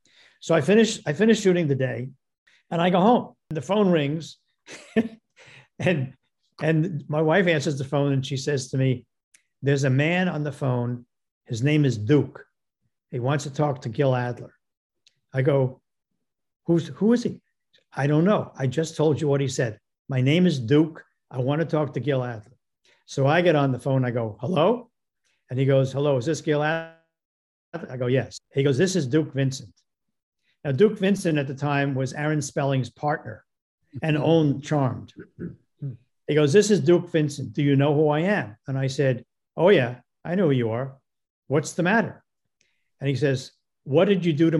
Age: 50-69